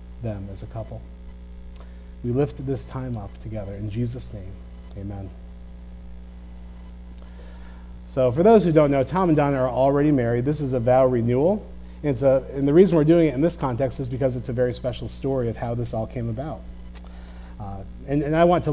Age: 40-59